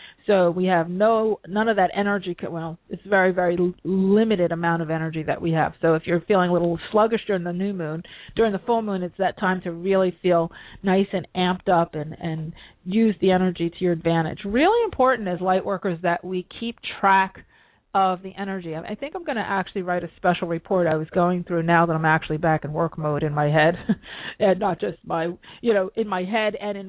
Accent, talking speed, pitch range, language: American, 235 wpm, 170-220 Hz, English